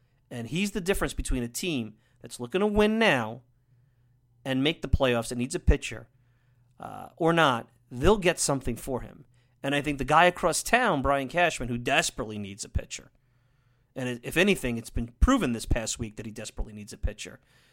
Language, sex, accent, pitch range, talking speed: English, male, American, 120-165 Hz, 195 wpm